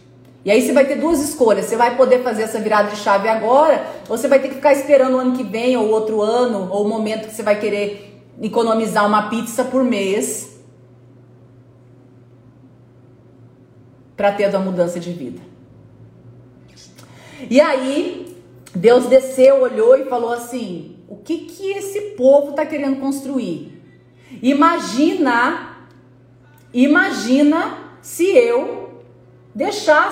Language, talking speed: Portuguese, 135 wpm